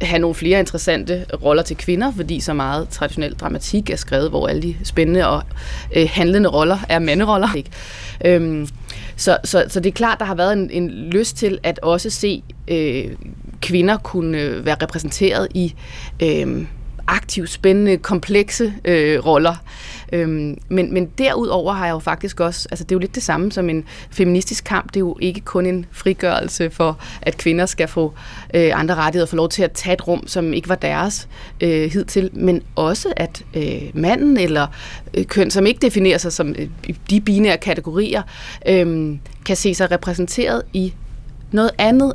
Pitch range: 160-190 Hz